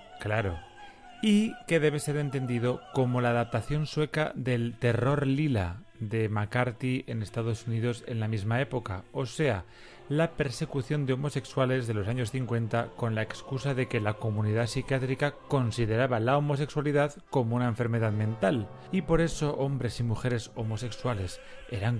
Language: Spanish